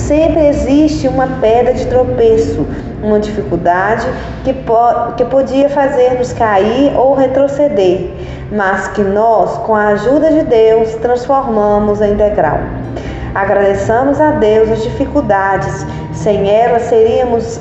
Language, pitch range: Portuguese, 205-245 Hz